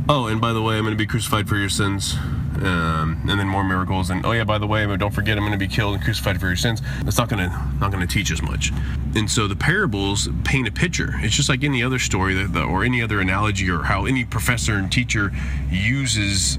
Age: 30-49